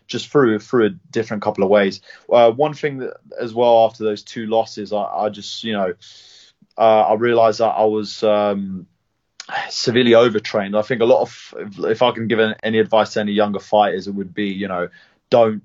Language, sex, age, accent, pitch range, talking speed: English, male, 20-39, British, 100-115 Hz, 205 wpm